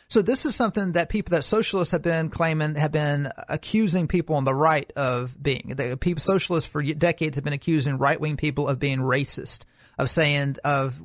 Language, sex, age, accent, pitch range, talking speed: English, male, 40-59, American, 140-165 Hz, 205 wpm